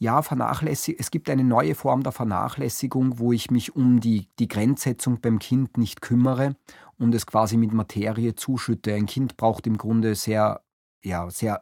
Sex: male